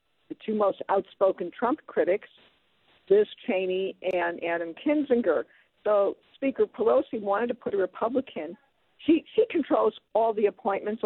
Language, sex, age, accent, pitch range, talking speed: English, female, 50-69, American, 195-275 Hz, 135 wpm